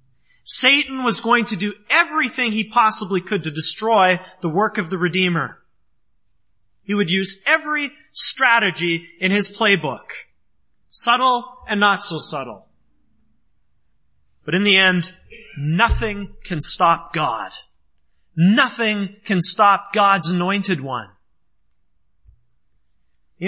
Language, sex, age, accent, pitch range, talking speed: English, male, 30-49, American, 160-225 Hz, 110 wpm